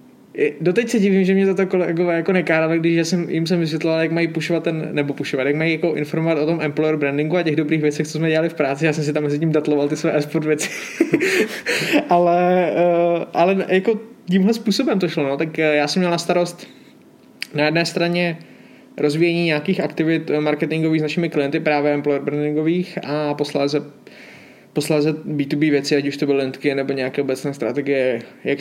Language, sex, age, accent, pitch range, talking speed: Czech, male, 20-39, native, 145-170 Hz, 190 wpm